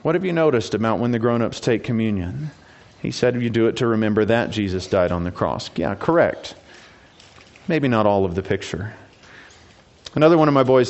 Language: English